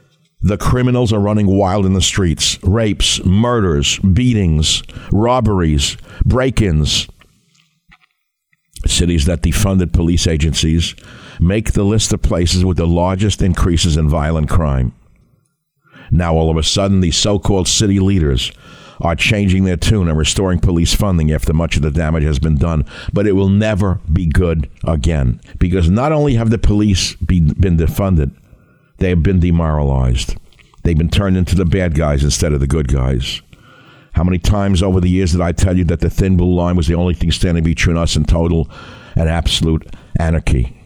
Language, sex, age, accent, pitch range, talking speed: English, male, 60-79, American, 80-100 Hz, 165 wpm